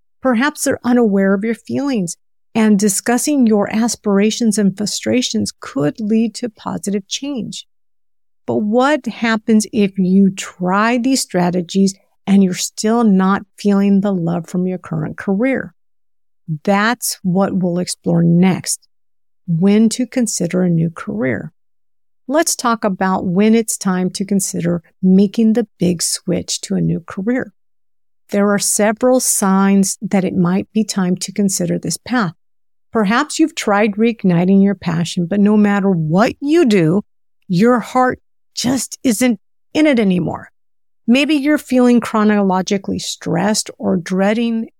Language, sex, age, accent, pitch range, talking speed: English, female, 50-69, American, 180-230 Hz, 135 wpm